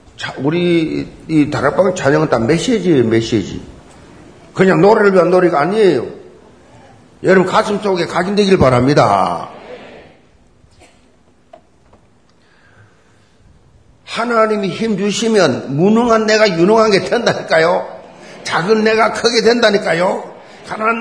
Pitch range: 140-230 Hz